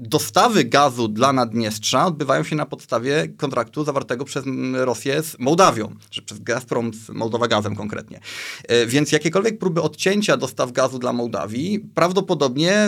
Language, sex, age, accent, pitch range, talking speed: Polish, male, 30-49, native, 120-150 Hz, 140 wpm